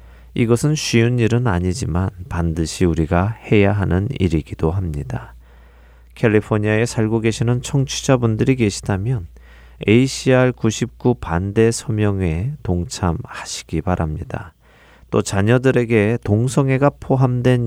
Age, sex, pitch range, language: 40-59, male, 85-120 Hz, Korean